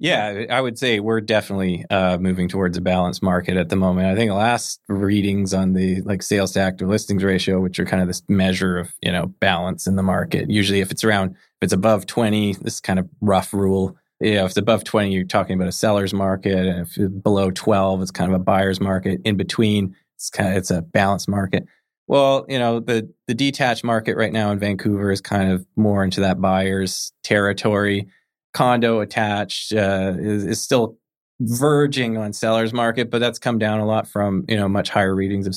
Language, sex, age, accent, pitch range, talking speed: English, male, 20-39, American, 95-110 Hz, 220 wpm